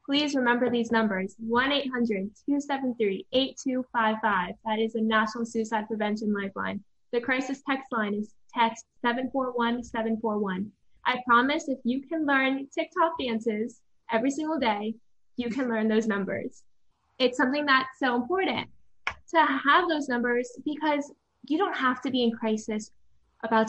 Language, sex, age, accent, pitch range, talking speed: English, female, 10-29, American, 220-260 Hz, 135 wpm